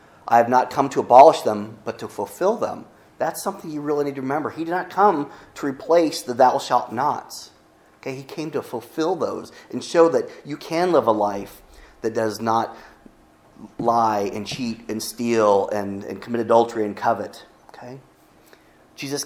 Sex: male